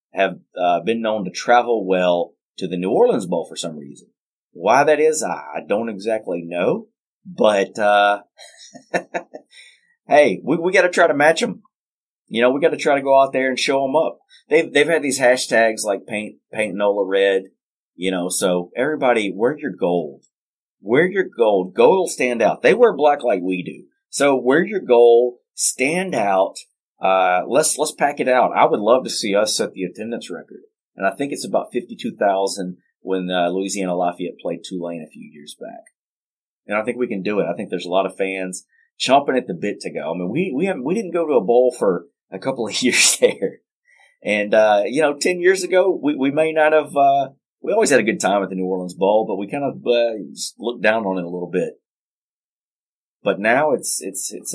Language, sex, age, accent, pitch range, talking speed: English, male, 30-49, American, 95-145 Hz, 210 wpm